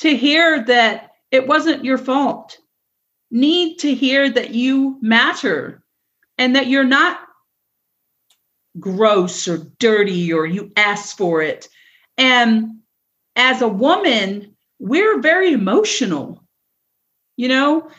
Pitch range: 215-305 Hz